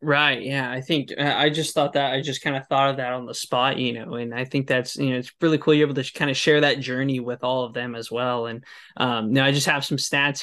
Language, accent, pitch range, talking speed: English, American, 130-145 Hz, 295 wpm